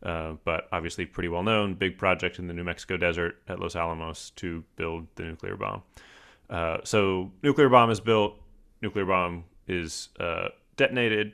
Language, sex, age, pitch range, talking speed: English, male, 30-49, 85-100 Hz, 165 wpm